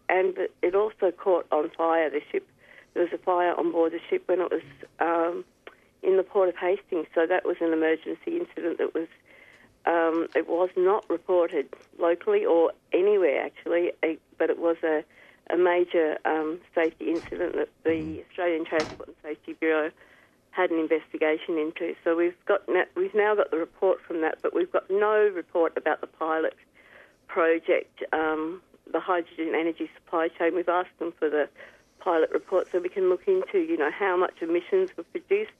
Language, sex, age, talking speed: English, female, 50-69, 180 wpm